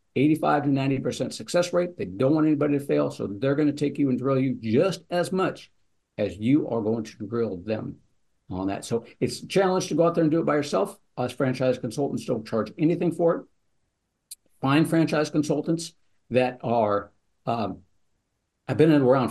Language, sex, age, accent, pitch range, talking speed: English, male, 60-79, American, 105-145 Hz, 195 wpm